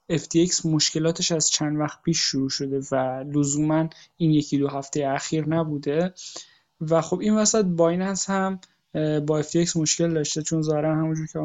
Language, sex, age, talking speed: Persian, male, 20-39, 170 wpm